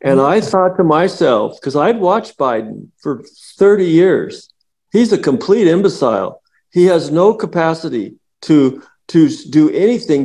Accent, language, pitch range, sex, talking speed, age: American, English, 165-235 Hz, male, 140 wpm, 50-69